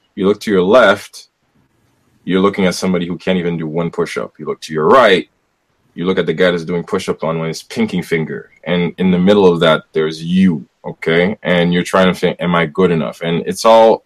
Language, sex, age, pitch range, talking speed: English, male, 20-39, 80-100 Hz, 225 wpm